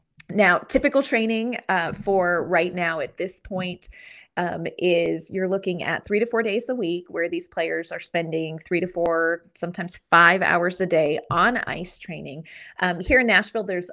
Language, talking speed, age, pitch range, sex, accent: English, 180 wpm, 30-49, 160-185 Hz, female, American